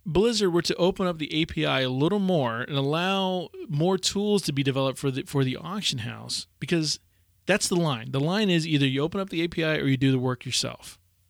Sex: male